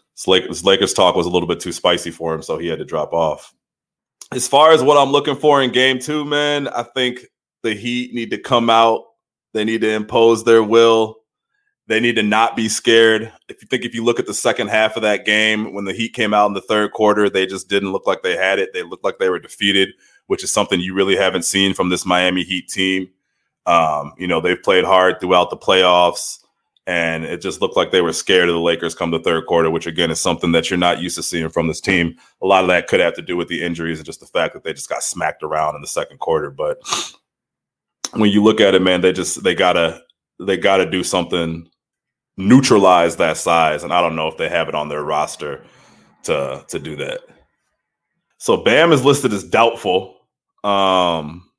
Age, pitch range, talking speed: 30-49, 90-125 Hz, 230 wpm